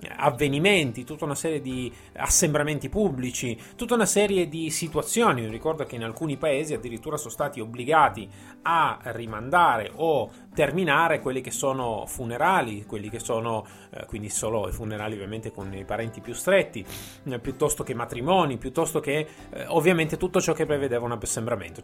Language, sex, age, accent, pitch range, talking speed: Italian, male, 30-49, native, 115-150 Hz, 150 wpm